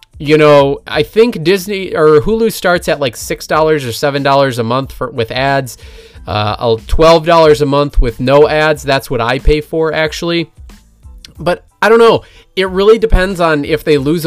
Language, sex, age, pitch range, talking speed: English, male, 30-49, 130-165 Hz, 185 wpm